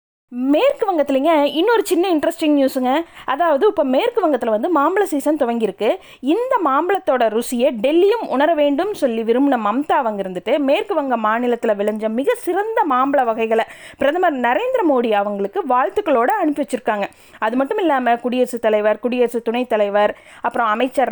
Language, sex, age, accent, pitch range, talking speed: Tamil, female, 20-39, native, 225-320 Hz, 135 wpm